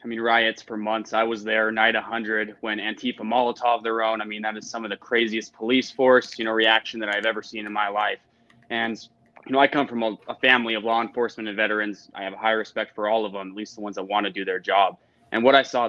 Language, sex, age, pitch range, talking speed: English, male, 20-39, 110-120 Hz, 270 wpm